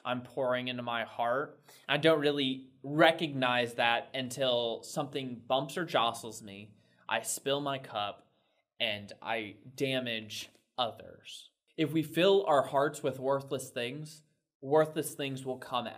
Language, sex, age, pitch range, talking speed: English, male, 20-39, 120-150 Hz, 135 wpm